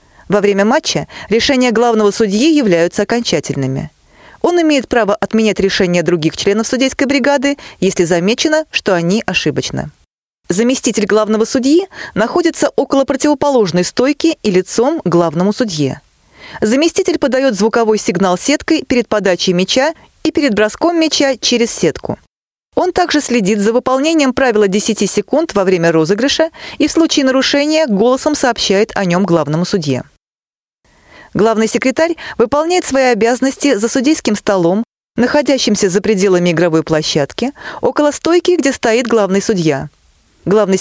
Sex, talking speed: female, 130 wpm